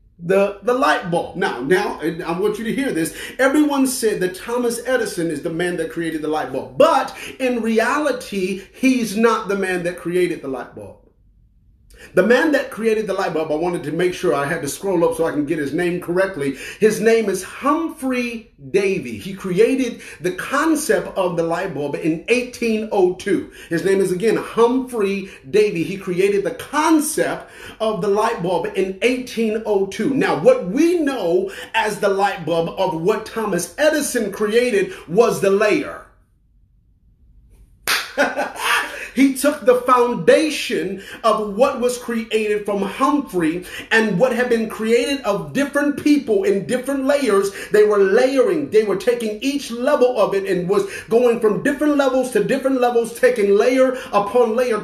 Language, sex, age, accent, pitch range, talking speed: English, male, 40-59, American, 185-255 Hz, 165 wpm